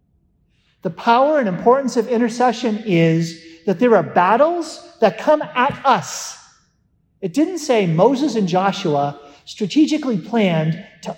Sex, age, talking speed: male, 50-69, 130 wpm